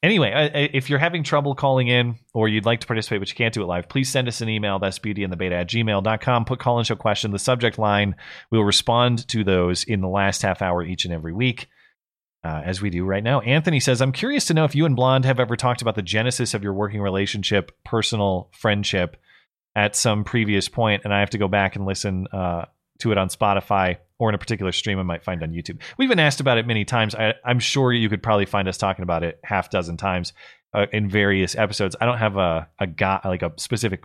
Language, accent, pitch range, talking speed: English, American, 95-120 Hz, 240 wpm